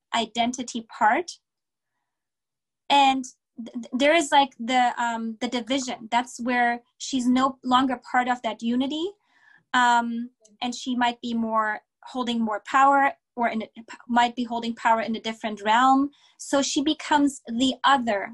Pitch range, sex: 225-270 Hz, female